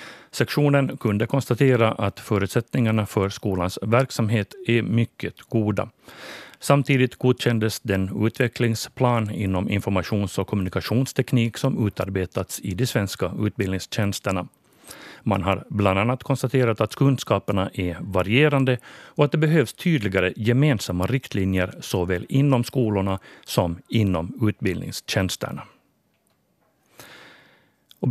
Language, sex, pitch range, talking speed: Swedish, male, 100-130 Hz, 100 wpm